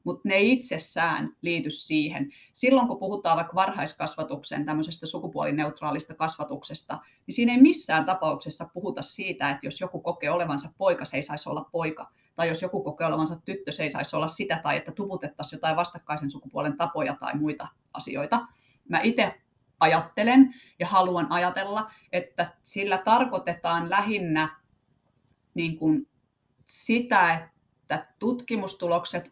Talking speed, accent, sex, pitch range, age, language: 135 wpm, native, female, 155-205 Hz, 30-49, Finnish